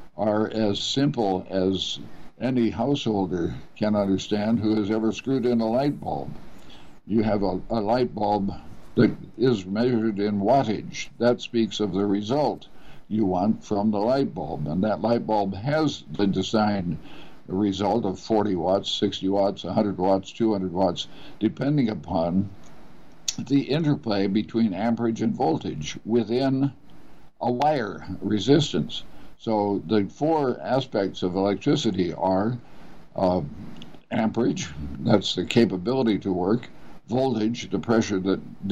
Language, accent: English, American